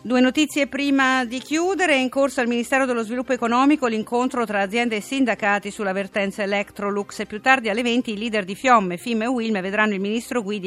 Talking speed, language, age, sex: 210 wpm, Italian, 50-69, female